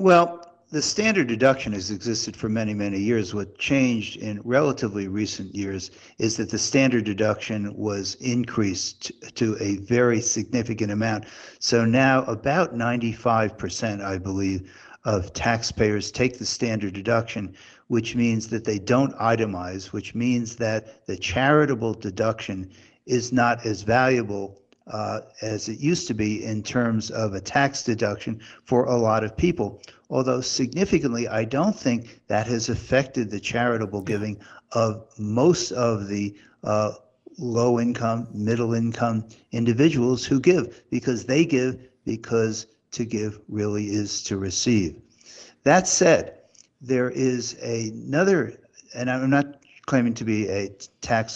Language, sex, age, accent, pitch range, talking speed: English, male, 60-79, American, 105-125 Hz, 140 wpm